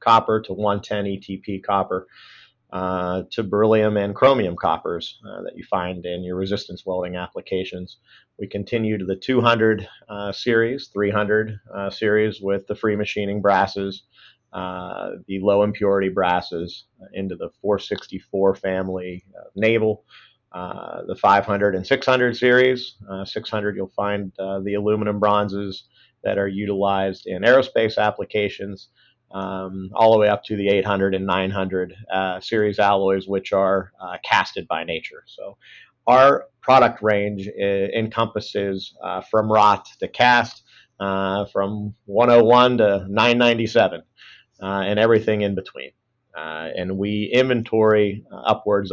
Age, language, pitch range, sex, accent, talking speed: 40-59, English, 95-110 Hz, male, American, 135 wpm